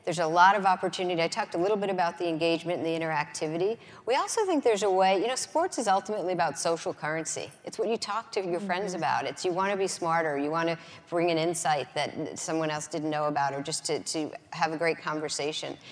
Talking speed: 240 wpm